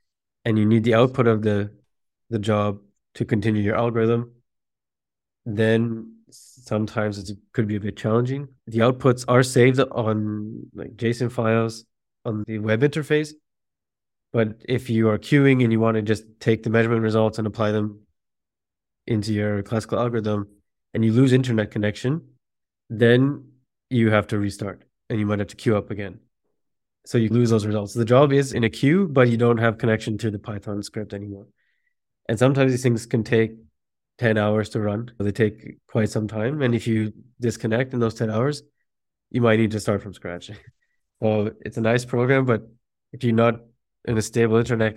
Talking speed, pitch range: 185 wpm, 105-120 Hz